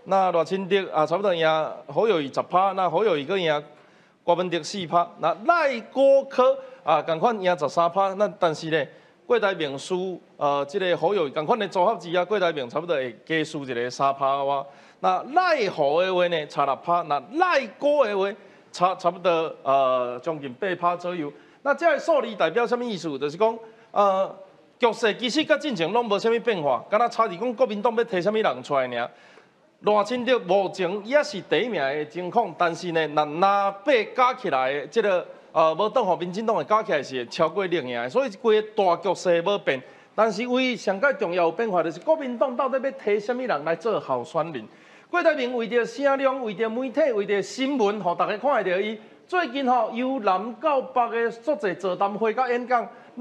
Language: Chinese